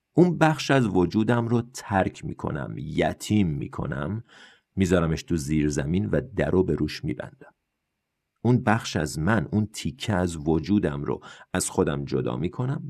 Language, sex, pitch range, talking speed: Persian, male, 80-110 Hz, 145 wpm